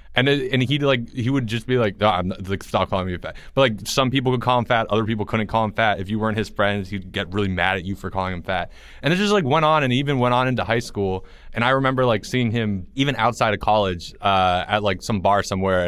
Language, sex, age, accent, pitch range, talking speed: English, male, 20-39, American, 105-145 Hz, 285 wpm